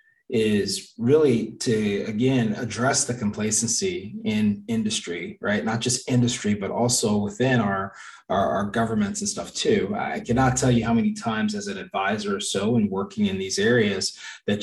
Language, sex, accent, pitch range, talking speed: English, male, American, 110-130 Hz, 170 wpm